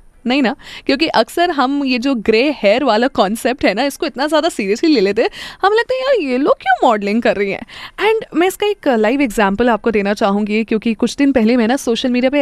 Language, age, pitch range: Hindi, 20-39, 220-315 Hz